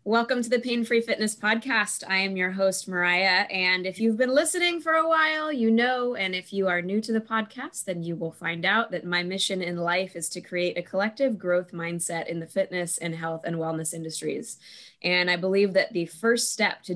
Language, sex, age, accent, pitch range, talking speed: English, female, 20-39, American, 170-220 Hz, 220 wpm